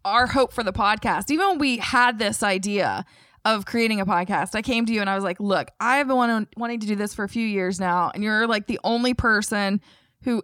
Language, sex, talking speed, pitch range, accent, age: English, female, 245 wpm, 195-245 Hz, American, 20-39